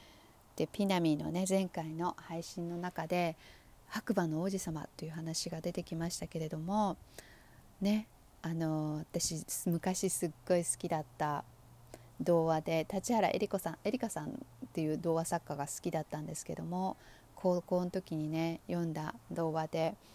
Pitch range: 155-195 Hz